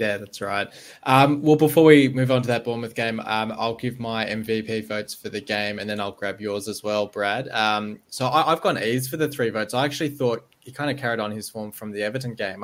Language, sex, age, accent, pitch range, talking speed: English, male, 20-39, Australian, 105-120 Hz, 250 wpm